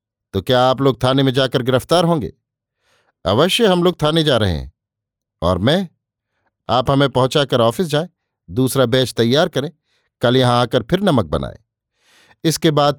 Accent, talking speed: native, 160 wpm